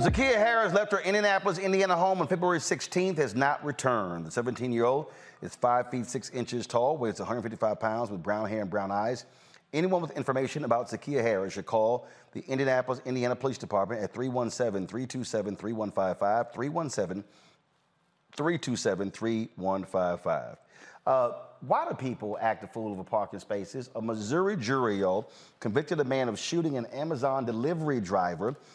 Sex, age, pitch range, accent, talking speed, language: male, 40-59, 120-160 Hz, American, 145 wpm, English